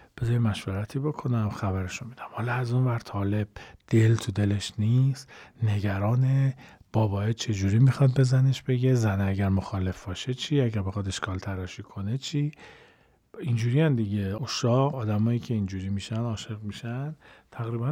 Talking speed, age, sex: 140 wpm, 40-59, male